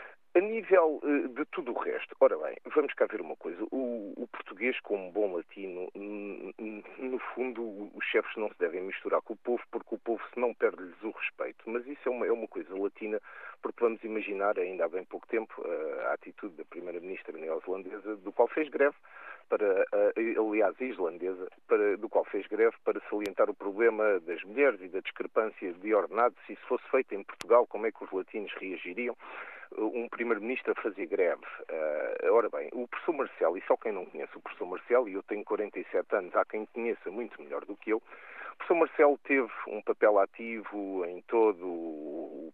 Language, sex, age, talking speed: Portuguese, male, 40-59, 190 wpm